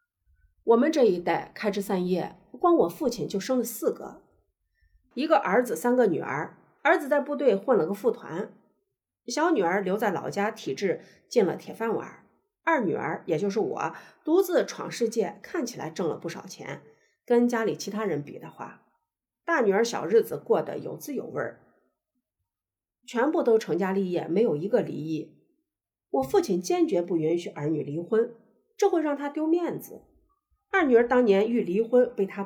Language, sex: Chinese, female